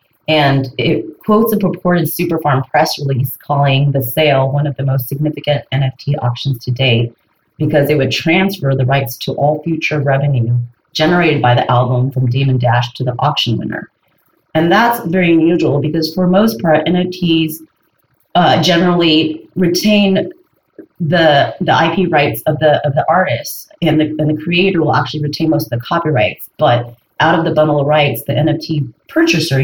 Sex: female